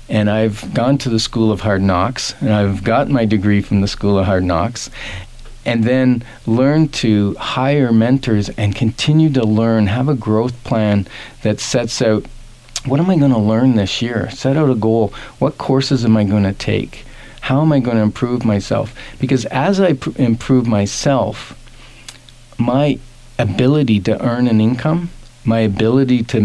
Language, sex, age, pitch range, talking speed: English, male, 40-59, 105-130 Hz, 170 wpm